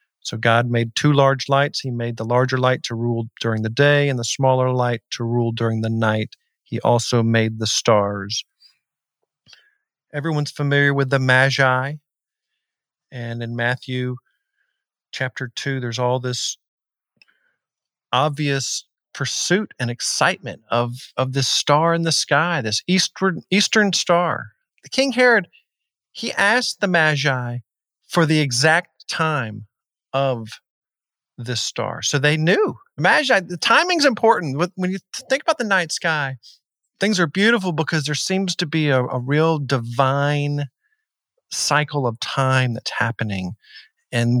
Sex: male